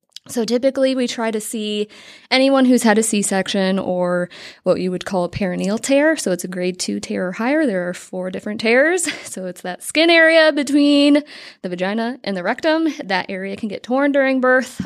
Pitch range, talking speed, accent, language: 185-255 Hz, 200 wpm, American, English